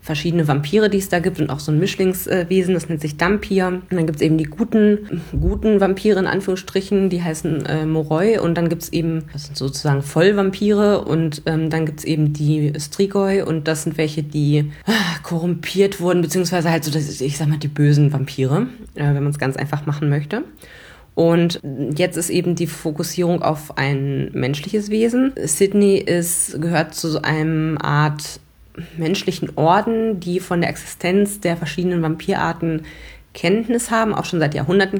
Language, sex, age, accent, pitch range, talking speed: German, female, 20-39, German, 150-180 Hz, 175 wpm